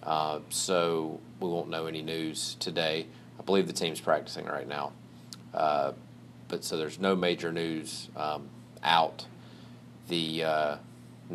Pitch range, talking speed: 75-90 Hz, 135 wpm